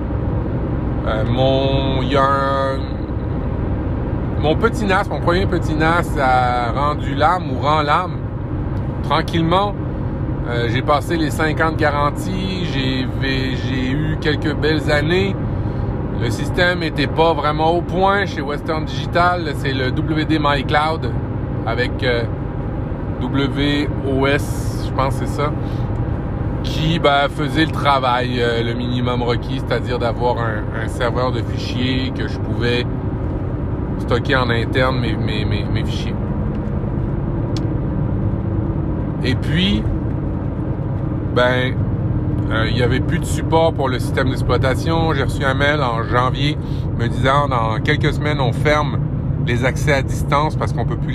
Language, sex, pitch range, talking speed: French, male, 115-145 Hz, 135 wpm